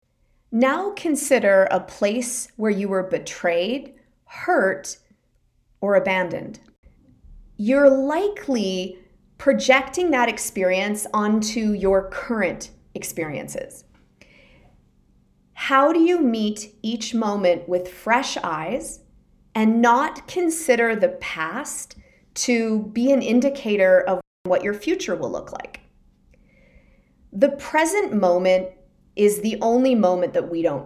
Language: English